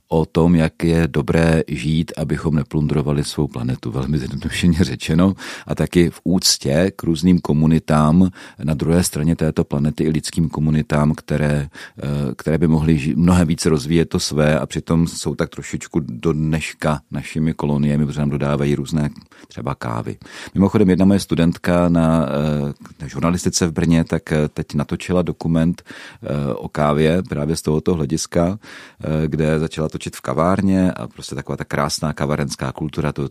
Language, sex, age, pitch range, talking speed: Czech, male, 40-59, 75-85 Hz, 150 wpm